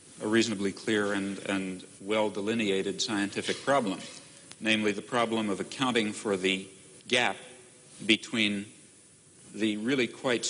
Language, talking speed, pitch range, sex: Persian, 120 wpm, 100-115 Hz, male